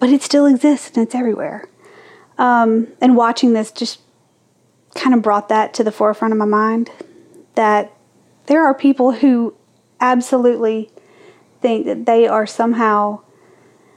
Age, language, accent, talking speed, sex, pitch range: 30-49, English, American, 140 wpm, female, 215-275 Hz